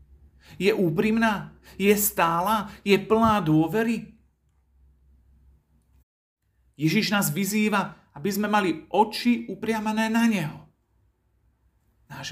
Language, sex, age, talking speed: Slovak, male, 40-59, 90 wpm